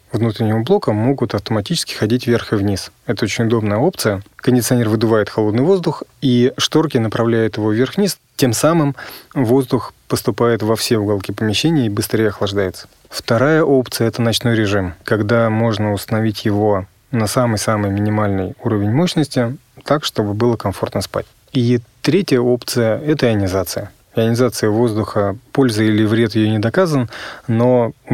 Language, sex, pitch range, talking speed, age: Russian, male, 105-125 Hz, 145 wpm, 30-49